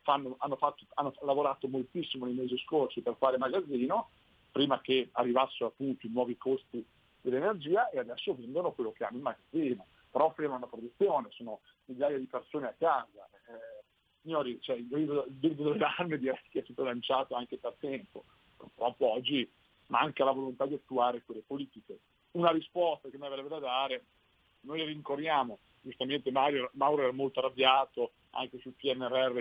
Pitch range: 125-150 Hz